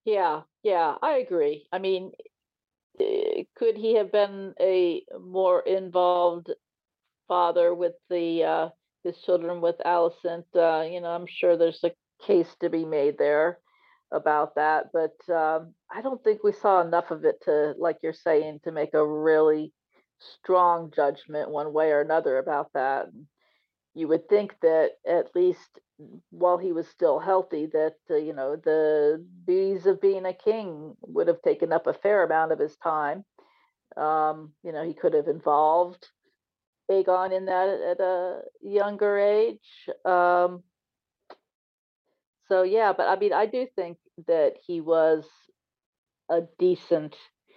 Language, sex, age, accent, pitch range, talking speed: English, female, 50-69, American, 160-210 Hz, 150 wpm